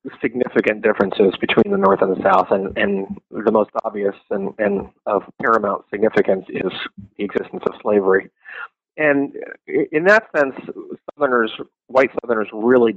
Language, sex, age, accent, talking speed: English, male, 30-49, American, 145 wpm